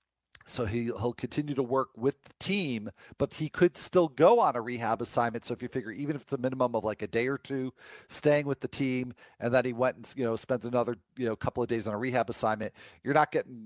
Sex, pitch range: male, 110-145 Hz